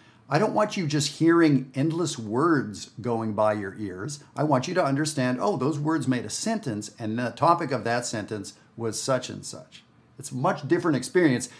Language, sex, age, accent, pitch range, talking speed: English, male, 50-69, American, 110-140 Hz, 195 wpm